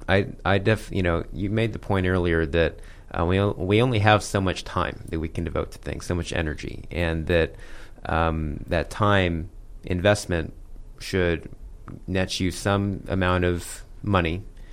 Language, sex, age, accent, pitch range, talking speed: English, male, 30-49, American, 80-95 Hz, 170 wpm